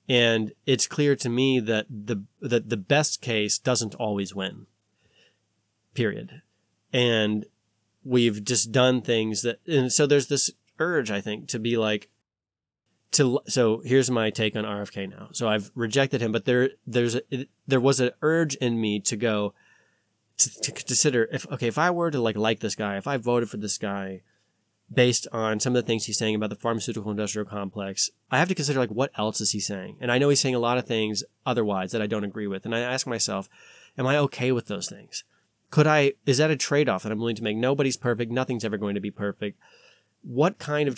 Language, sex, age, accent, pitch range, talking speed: English, male, 20-39, American, 110-135 Hz, 210 wpm